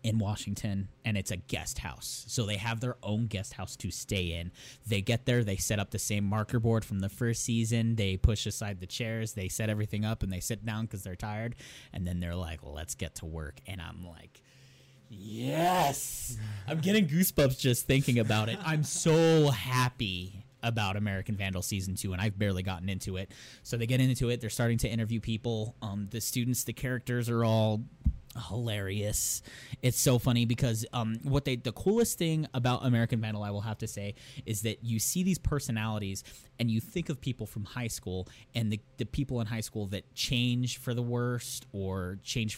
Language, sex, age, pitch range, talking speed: English, male, 20-39, 100-125 Hz, 205 wpm